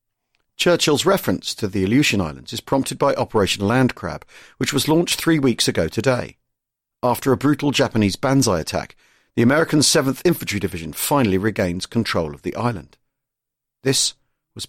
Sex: male